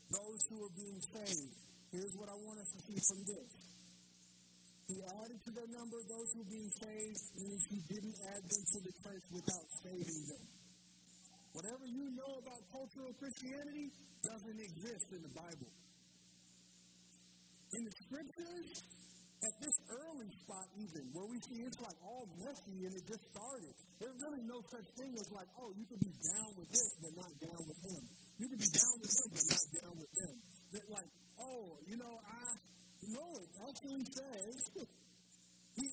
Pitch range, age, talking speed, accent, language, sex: 165-240 Hz, 50-69, 175 wpm, American, English, male